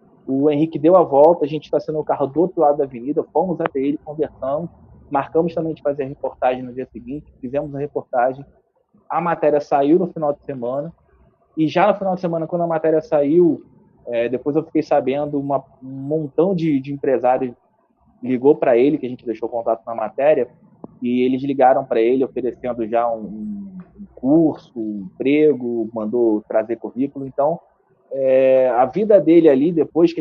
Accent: Brazilian